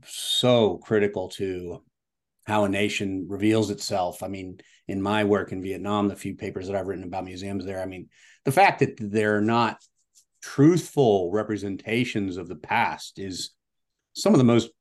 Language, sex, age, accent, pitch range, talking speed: English, male, 40-59, American, 95-110 Hz, 165 wpm